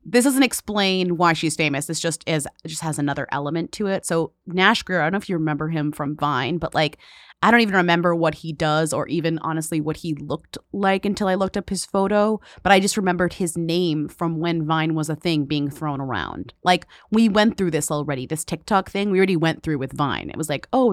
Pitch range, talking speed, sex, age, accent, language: 150-195 Hz, 240 wpm, female, 30-49, American, English